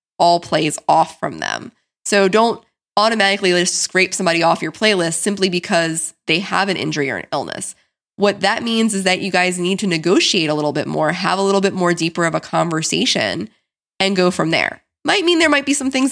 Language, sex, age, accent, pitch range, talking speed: English, female, 20-39, American, 170-215 Hz, 210 wpm